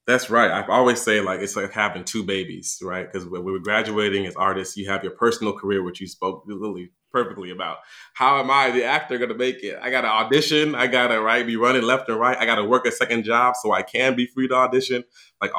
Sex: male